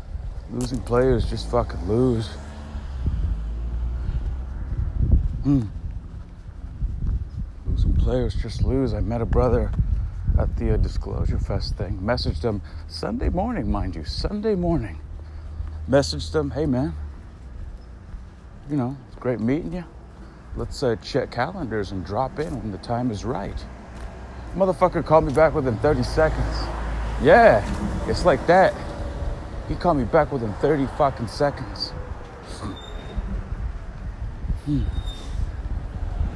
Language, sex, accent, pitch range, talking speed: English, male, American, 85-115 Hz, 115 wpm